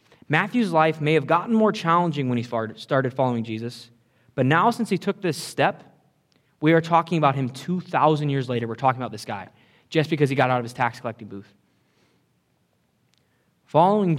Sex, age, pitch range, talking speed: male, 20-39, 120-165 Hz, 180 wpm